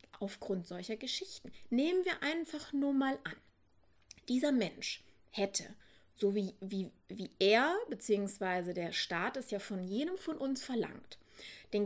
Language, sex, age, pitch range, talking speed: German, female, 30-49, 200-260 Hz, 140 wpm